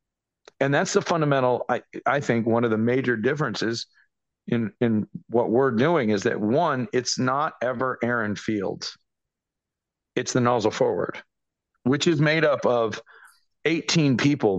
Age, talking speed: 50-69, 150 wpm